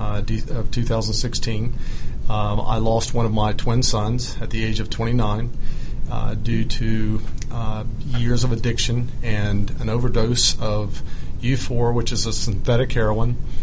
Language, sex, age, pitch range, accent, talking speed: English, male, 40-59, 105-120 Hz, American, 145 wpm